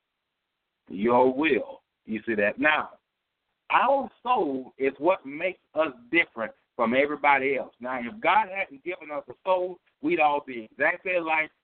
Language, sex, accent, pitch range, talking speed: English, male, American, 130-180 Hz, 150 wpm